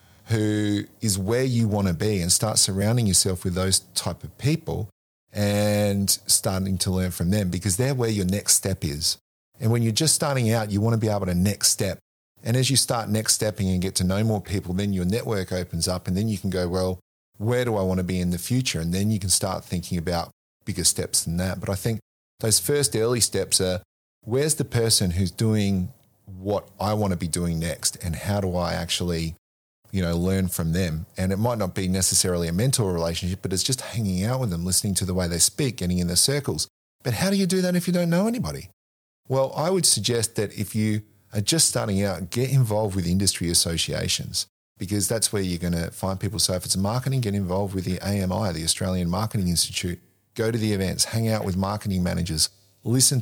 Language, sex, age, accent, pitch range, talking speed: English, male, 40-59, Australian, 90-110 Hz, 225 wpm